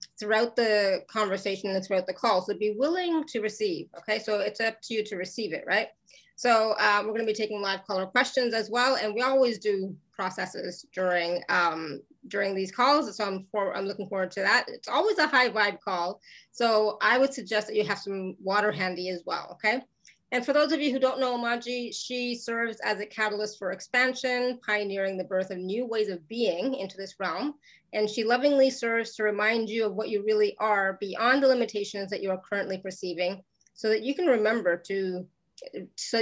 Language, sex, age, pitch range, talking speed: English, female, 30-49, 195-235 Hz, 205 wpm